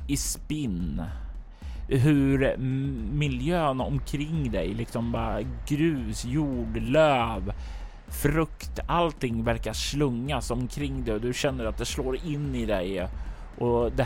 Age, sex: 30-49, male